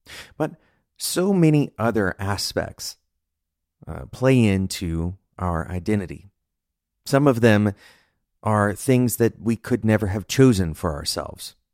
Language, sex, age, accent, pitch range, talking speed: English, male, 30-49, American, 85-125 Hz, 120 wpm